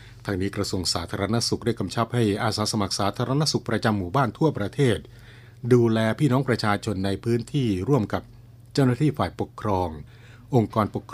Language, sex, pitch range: Thai, male, 100-120 Hz